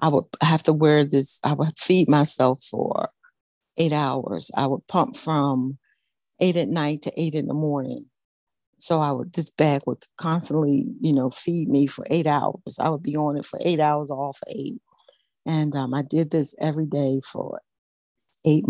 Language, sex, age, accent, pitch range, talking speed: English, female, 60-79, American, 140-175 Hz, 190 wpm